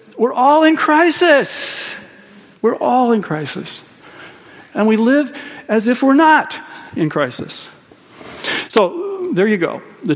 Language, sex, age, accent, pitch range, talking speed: English, male, 50-69, American, 155-240 Hz, 130 wpm